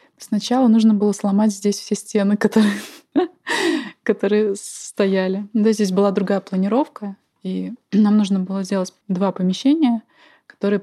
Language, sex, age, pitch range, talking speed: Russian, female, 20-39, 180-210 Hz, 130 wpm